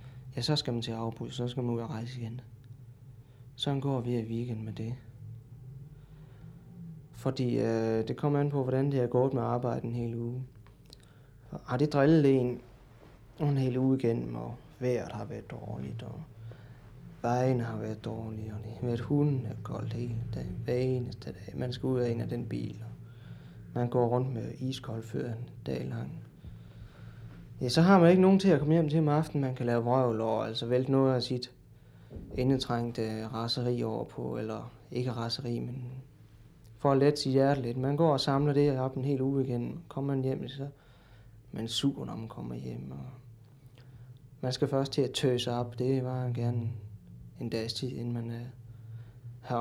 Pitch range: 115-135 Hz